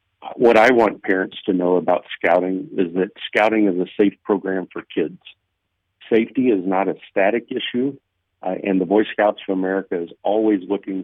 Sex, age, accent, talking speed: male, 50-69, American, 180 wpm